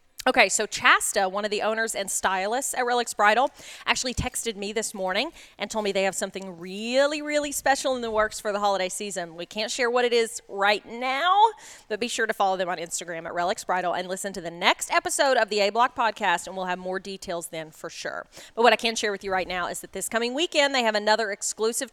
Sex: female